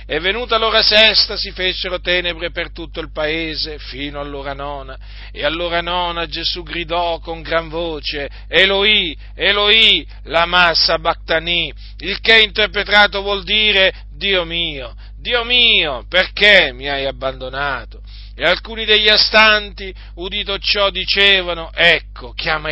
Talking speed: 130 wpm